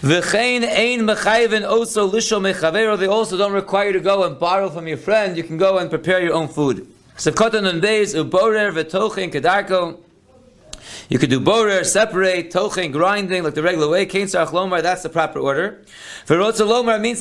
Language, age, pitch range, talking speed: English, 40-59, 160-210 Hz, 170 wpm